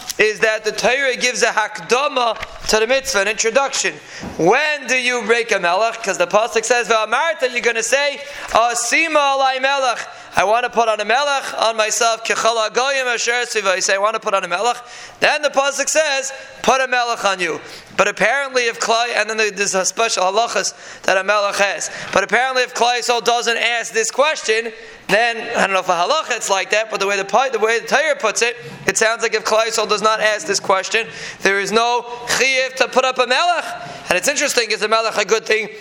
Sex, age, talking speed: male, 20-39, 215 wpm